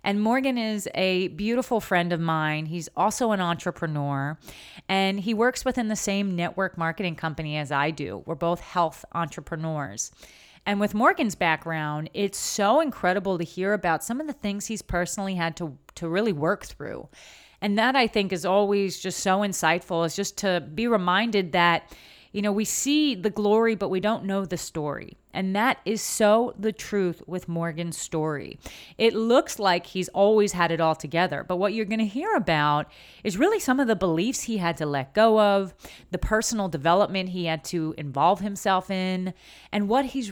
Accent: American